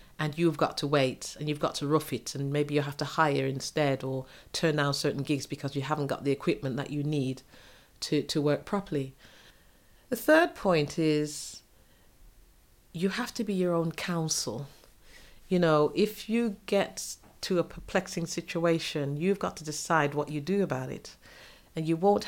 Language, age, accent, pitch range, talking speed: English, 40-59, British, 140-170 Hz, 185 wpm